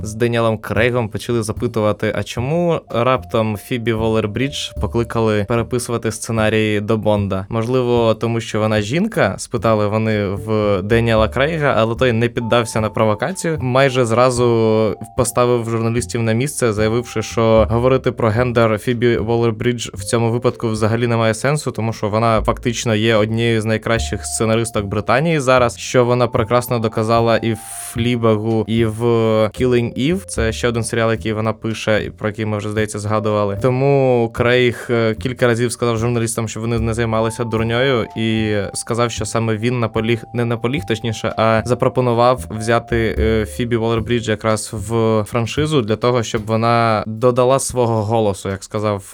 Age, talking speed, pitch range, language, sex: 20-39, 150 wpm, 110-125 Hz, Ukrainian, male